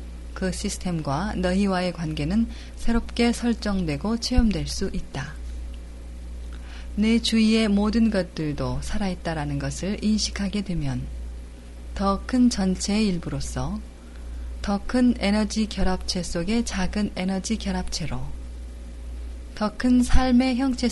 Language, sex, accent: Korean, female, native